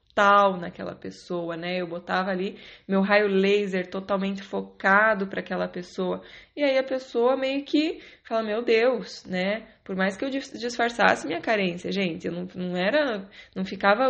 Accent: Brazilian